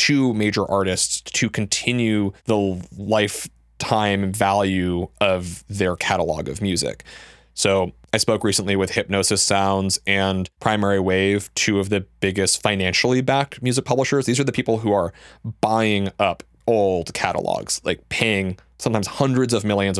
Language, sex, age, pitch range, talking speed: English, male, 20-39, 95-115 Hz, 140 wpm